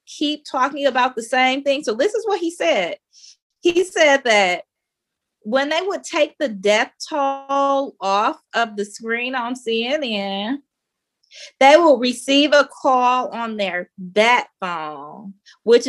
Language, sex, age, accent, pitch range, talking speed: English, female, 20-39, American, 200-280 Hz, 145 wpm